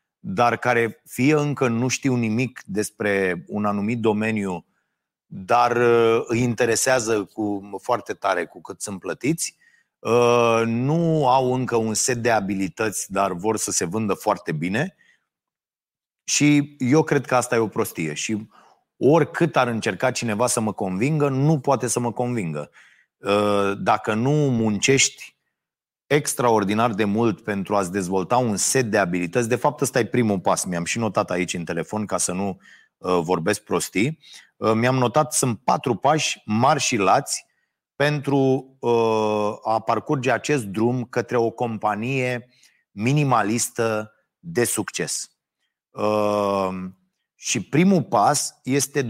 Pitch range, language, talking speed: 105-130 Hz, Romanian, 135 wpm